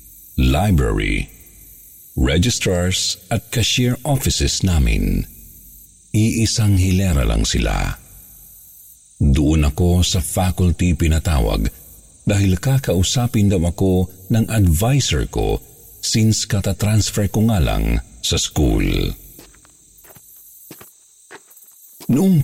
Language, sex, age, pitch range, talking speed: Filipino, male, 50-69, 80-105 Hz, 80 wpm